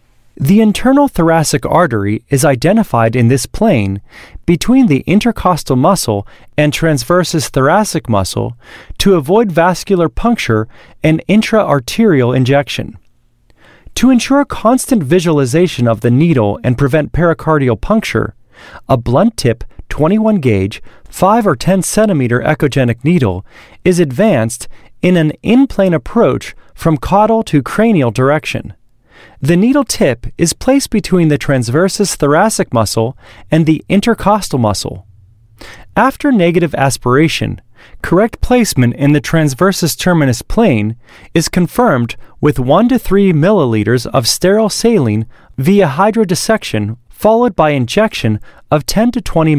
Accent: American